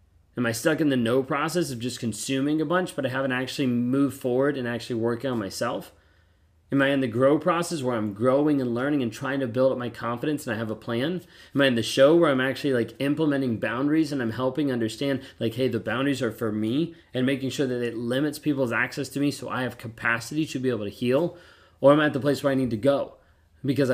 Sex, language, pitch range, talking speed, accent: male, English, 115-140 Hz, 250 wpm, American